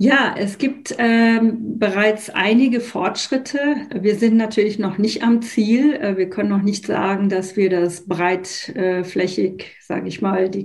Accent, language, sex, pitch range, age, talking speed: German, German, female, 185-215 Hz, 40-59, 150 wpm